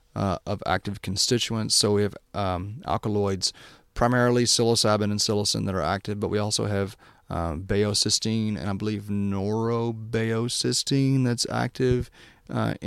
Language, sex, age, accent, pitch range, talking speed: English, male, 30-49, American, 100-115 Hz, 135 wpm